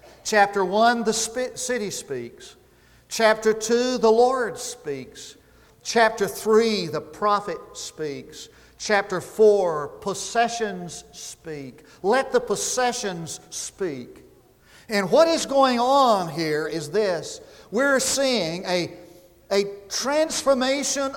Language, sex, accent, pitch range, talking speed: English, male, American, 200-255 Hz, 100 wpm